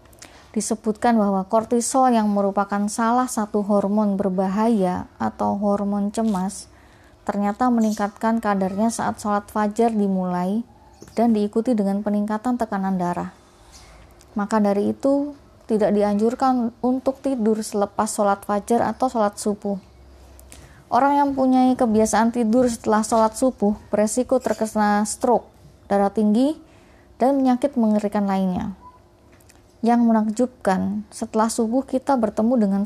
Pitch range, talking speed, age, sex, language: 205-235 Hz, 115 wpm, 20-39, female, Indonesian